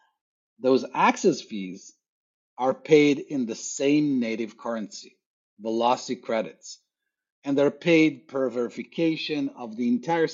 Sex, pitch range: male, 120-170 Hz